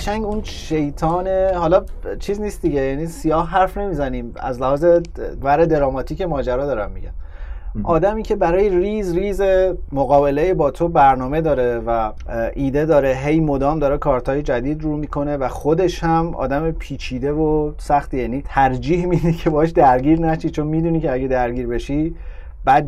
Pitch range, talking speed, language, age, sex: 115-155 Hz, 155 wpm, Persian, 30-49, male